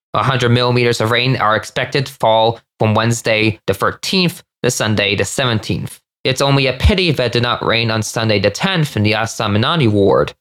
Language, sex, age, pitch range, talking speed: English, male, 20-39, 110-140 Hz, 190 wpm